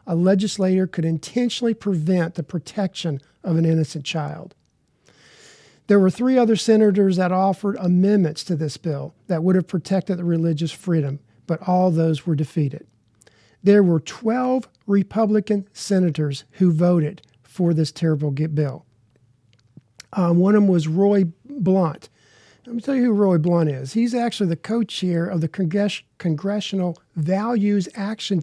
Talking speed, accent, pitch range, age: 145 wpm, American, 160-200 Hz, 50-69